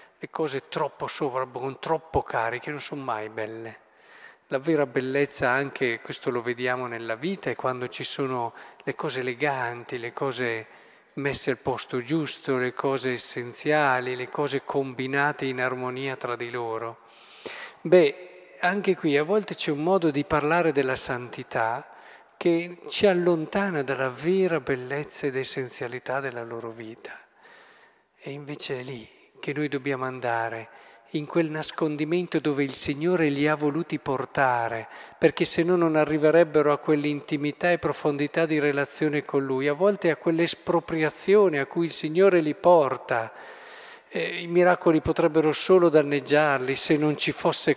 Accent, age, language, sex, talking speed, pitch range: native, 50-69, Italian, male, 145 wpm, 130-165 Hz